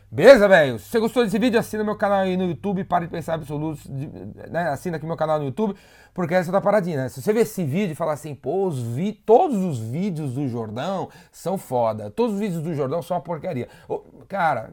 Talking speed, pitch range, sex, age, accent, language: 240 wpm, 130-190 Hz, male, 30-49, Brazilian, Portuguese